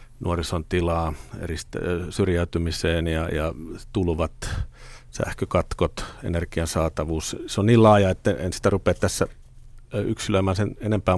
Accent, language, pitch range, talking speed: native, Finnish, 90-110 Hz, 115 wpm